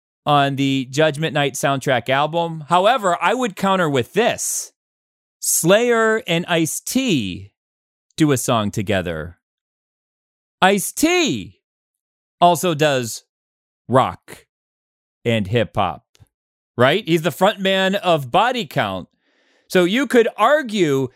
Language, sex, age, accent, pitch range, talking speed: English, male, 40-59, American, 135-200 Hz, 110 wpm